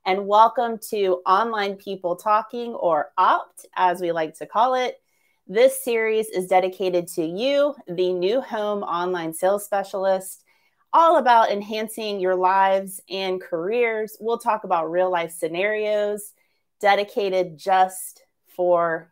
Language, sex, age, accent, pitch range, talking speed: English, female, 30-49, American, 180-235 Hz, 130 wpm